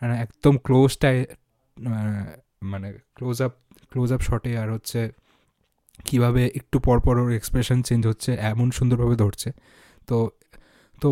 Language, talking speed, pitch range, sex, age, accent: Bengali, 125 wpm, 110-135 Hz, male, 20-39, native